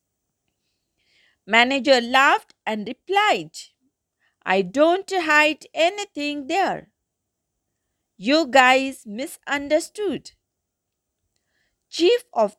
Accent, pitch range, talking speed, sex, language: Indian, 255-360 Hz, 65 wpm, female, English